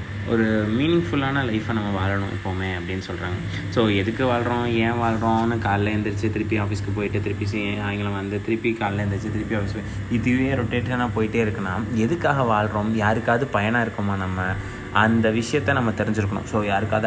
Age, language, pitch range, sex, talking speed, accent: 20-39, Tamil, 100-115 Hz, male, 155 wpm, native